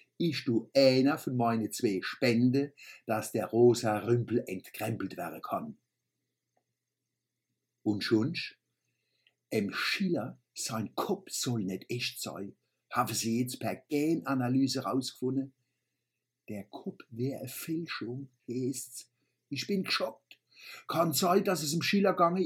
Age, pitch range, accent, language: 60-79, 120-180 Hz, German, German